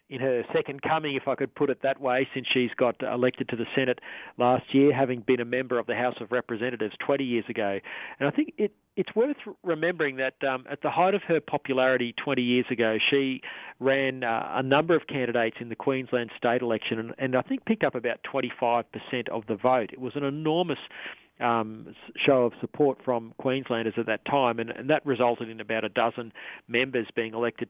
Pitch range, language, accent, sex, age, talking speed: 115-135 Hz, English, Australian, male, 40-59, 210 wpm